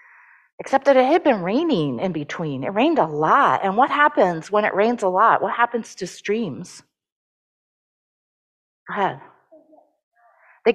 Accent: American